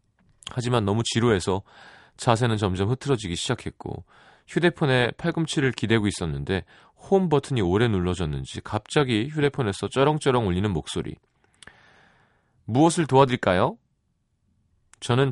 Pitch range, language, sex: 95-135 Hz, Korean, male